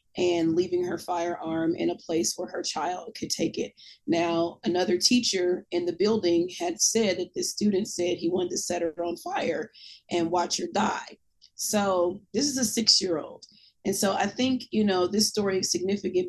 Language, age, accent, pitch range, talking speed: English, 30-49, American, 175-215 Hz, 190 wpm